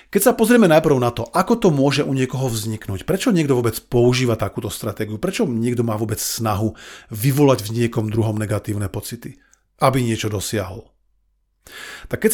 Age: 40-59